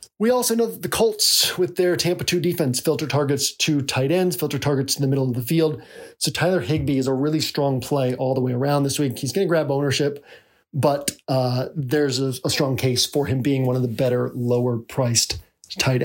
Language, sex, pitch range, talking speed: English, male, 135-165 Hz, 220 wpm